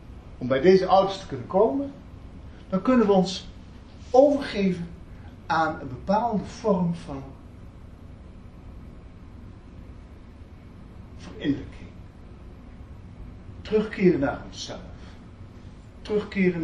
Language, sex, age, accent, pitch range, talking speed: Dutch, male, 60-79, Dutch, 90-150 Hz, 80 wpm